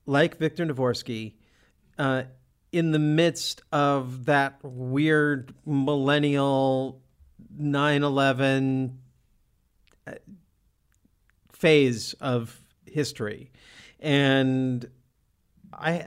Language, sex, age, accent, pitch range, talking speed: English, male, 40-59, American, 115-150 Hz, 65 wpm